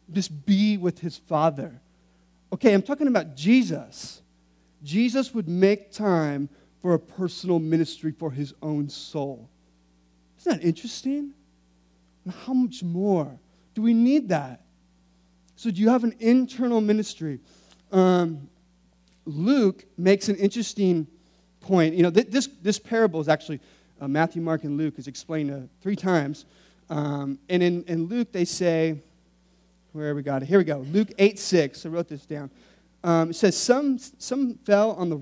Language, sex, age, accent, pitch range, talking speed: English, male, 30-49, American, 150-200 Hz, 160 wpm